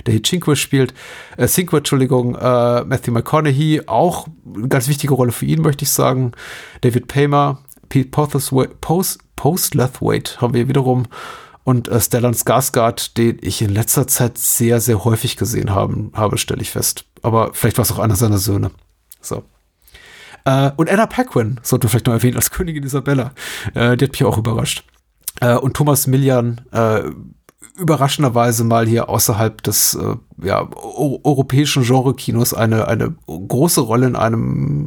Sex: male